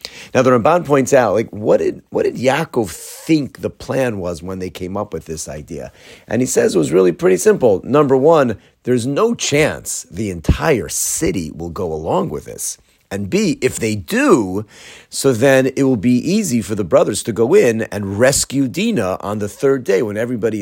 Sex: male